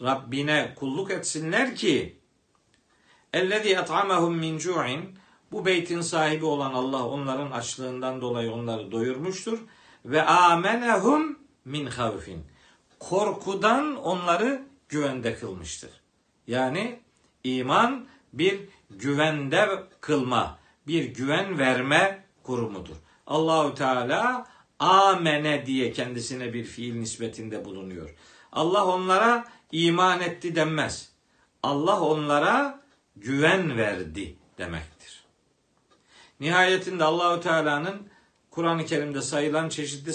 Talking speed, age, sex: 90 wpm, 60-79, male